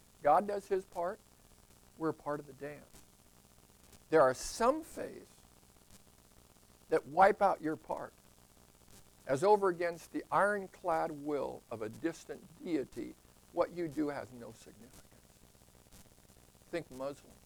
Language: English